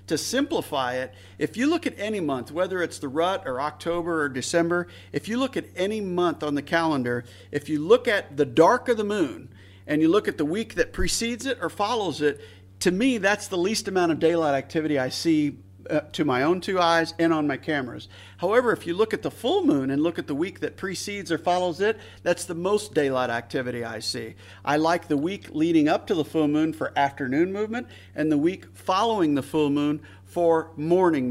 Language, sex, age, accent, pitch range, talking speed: English, male, 50-69, American, 140-180 Hz, 220 wpm